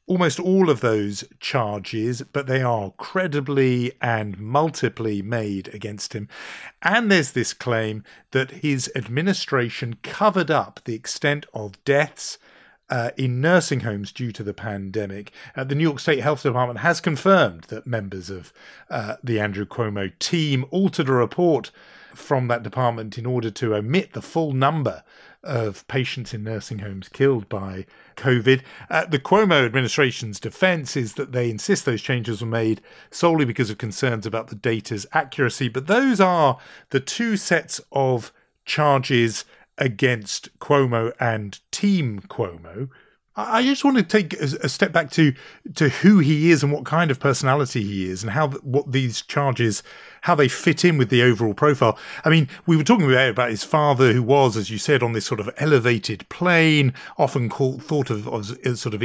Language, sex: English, male